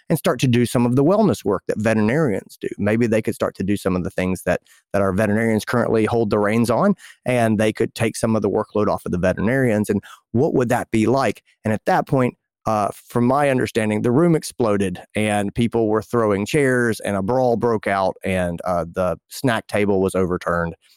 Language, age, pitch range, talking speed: English, 30-49, 105-130 Hz, 220 wpm